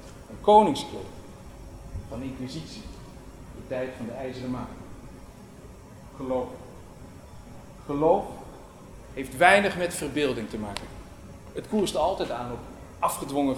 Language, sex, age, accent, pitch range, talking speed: Dutch, male, 50-69, Dutch, 135-205 Hz, 100 wpm